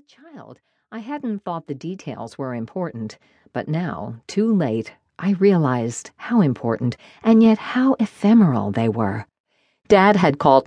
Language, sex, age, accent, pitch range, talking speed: English, female, 50-69, American, 135-205 Hz, 140 wpm